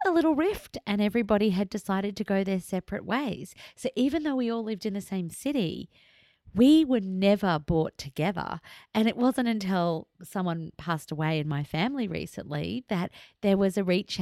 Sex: female